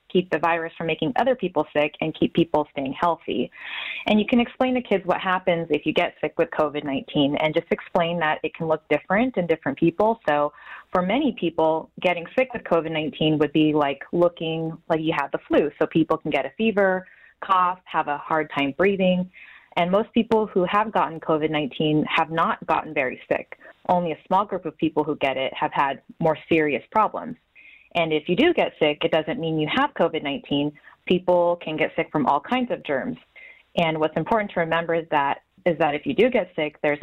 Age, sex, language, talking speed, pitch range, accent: 20-39, female, English, 210 wpm, 155-185 Hz, American